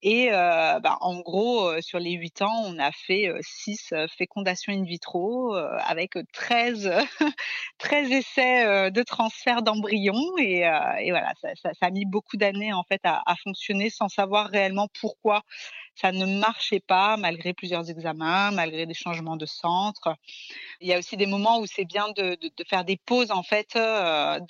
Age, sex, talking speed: 30-49, female, 190 wpm